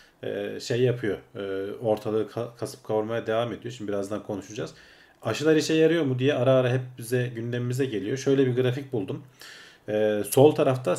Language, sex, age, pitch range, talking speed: Turkish, male, 40-59, 105-135 Hz, 145 wpm